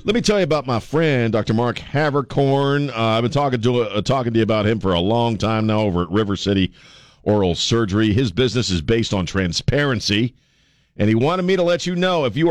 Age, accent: 50-69, American